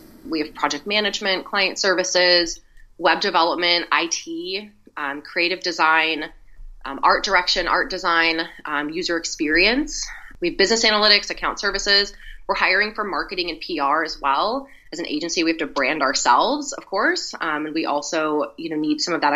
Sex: female